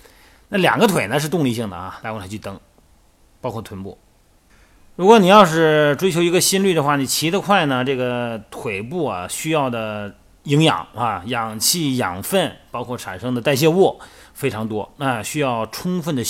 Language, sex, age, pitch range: Chinese, male, 30-49, 105-145 Hz